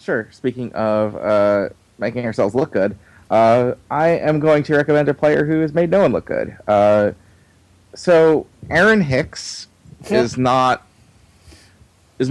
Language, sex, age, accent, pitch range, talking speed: English, male, 30-49, American, 100-130 Hz, 145 wpm